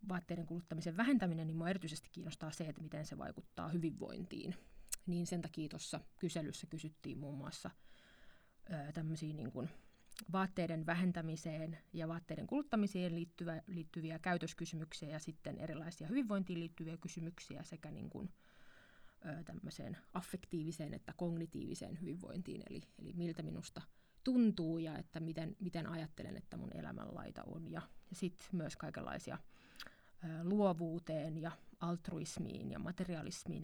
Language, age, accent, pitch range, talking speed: Finnish, 30-49, native, 160-185 Hz, 125 wpm